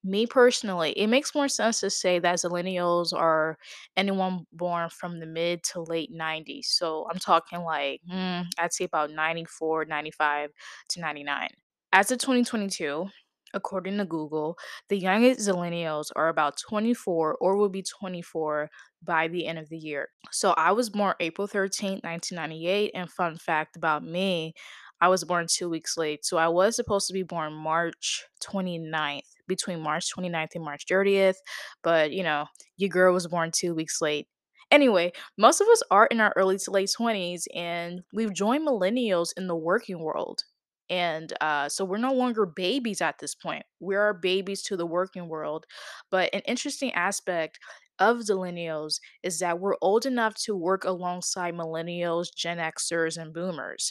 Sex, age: female, 10-29